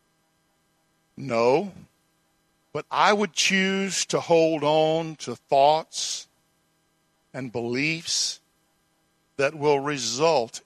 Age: 50-69